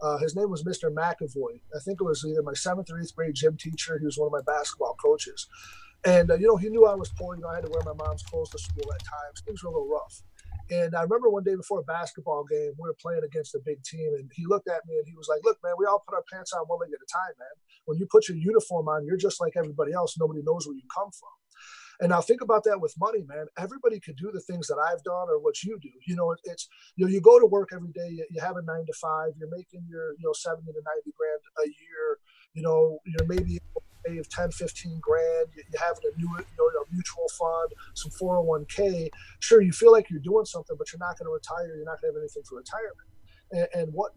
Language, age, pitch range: English, 30-49, 160-225 Hz